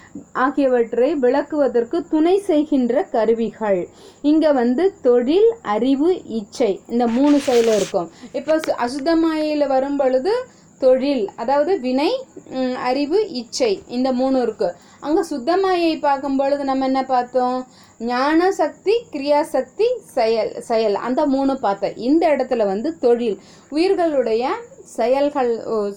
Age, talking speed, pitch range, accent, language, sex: 30-49, 105 wpm, 235-310 Hz, native, Tamil, female